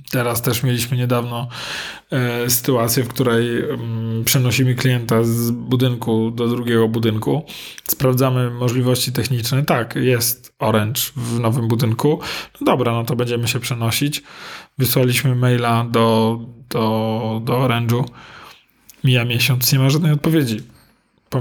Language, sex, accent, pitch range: Polish, male, native, 120-140 Hz